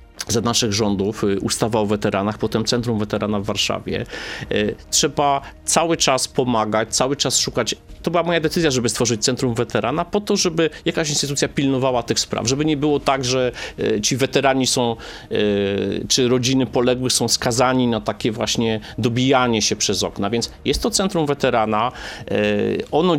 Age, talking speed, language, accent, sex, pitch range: 30-49, 155 wpm, Polish, native, male, 110-130 Hz